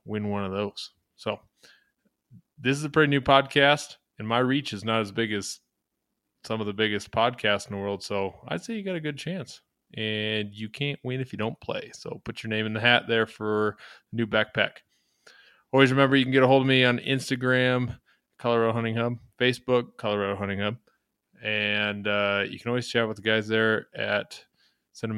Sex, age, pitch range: male, 20-39, 105-125 Hz